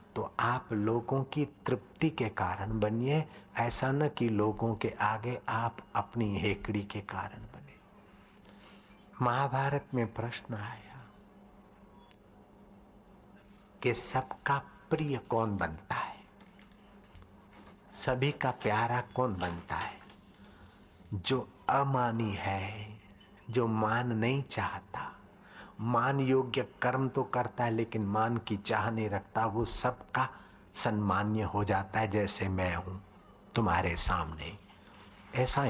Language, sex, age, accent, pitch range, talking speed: Hindi, male, 60-79, native, 100-130 Hz, 115 wpm